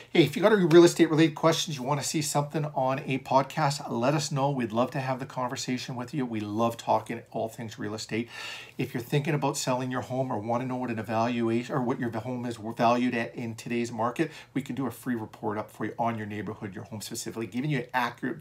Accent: American